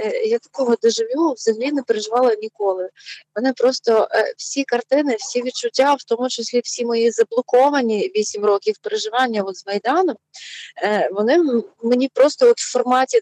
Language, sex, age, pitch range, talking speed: Ukrainian, female, 20-39, 210-260 Hz, 130 wpm